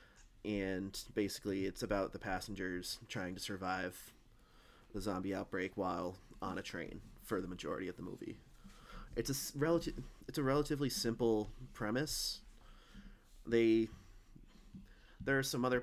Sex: male